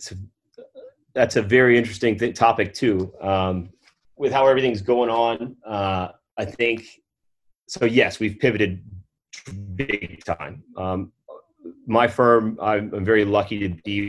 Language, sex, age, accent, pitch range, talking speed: English, male, 30-49, American, 90-105 Hz, 130 wpm